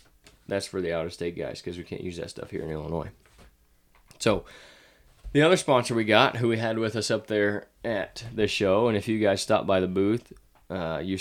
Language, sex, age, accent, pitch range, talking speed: English, male, 20-39, American, 90-110 Hz, 225 wpm